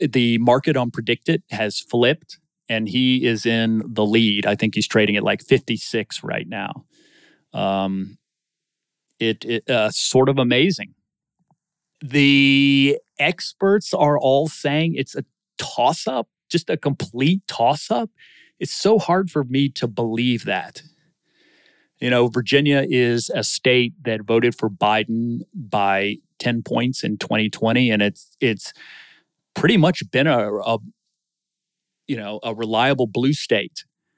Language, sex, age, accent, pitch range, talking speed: English, male, 30-49, American, 110-145 Hz, 130 wpm